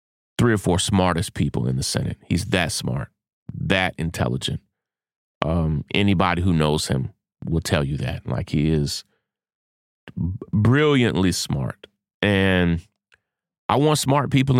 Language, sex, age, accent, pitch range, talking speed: English, male, 30-49, American, 90-120 Hz, 130 wpm